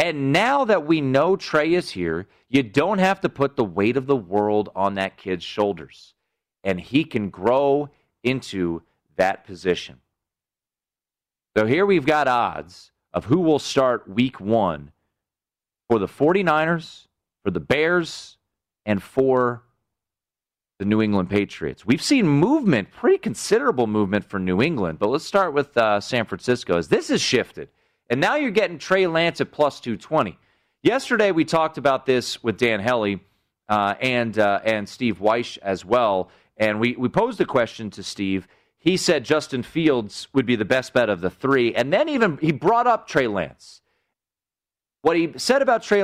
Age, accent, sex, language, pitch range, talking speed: 30-49, American, male, English, 105-160 Hz, 170 wpm